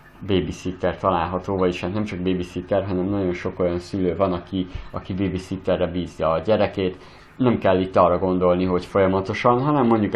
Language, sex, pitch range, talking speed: Hungarian, male, 90-100 Hz, 160 wpm